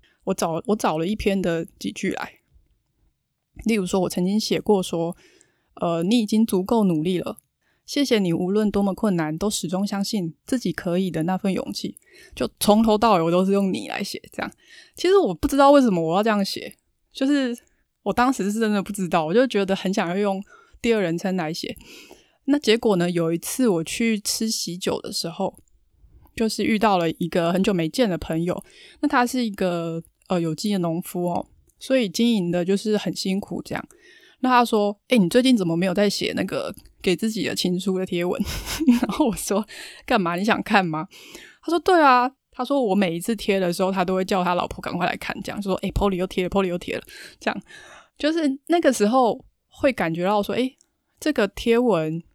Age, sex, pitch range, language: 20-39, female, 180-235 Hz, Chinese